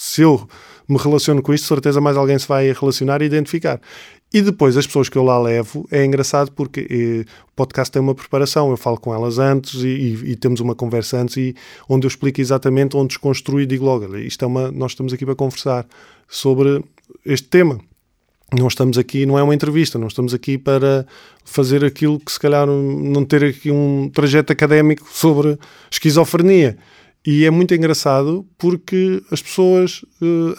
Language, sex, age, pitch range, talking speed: Portuguese, male, 20-39, 130-150 Hz, 185 wpm